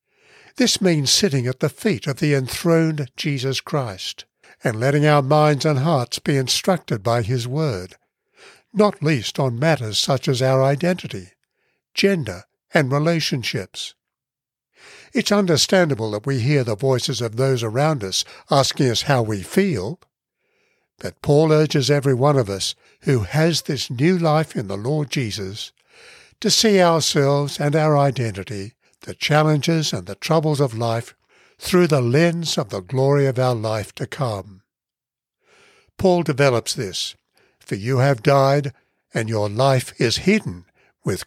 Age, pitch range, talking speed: 60-79, 125-165 Hz, 150 wpm